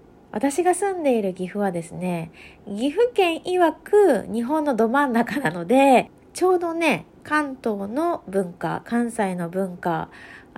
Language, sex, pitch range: Japanese, female, 180-265 Hz